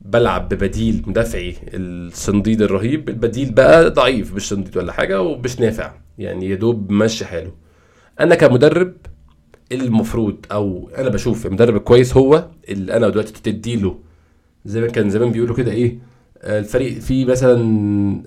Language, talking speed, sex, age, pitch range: Arabic, 140 wpm, male, 20-39, 105-140 Hz